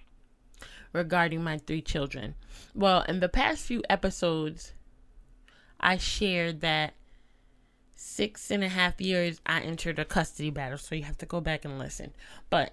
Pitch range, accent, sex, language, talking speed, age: 160-195 Hz, American, female, English, 150 wpm, 20-39